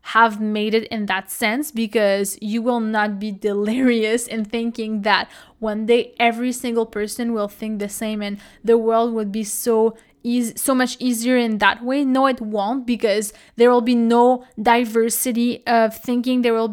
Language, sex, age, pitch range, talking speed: English, female, 20-39, 220-255 Hz, 180 wpm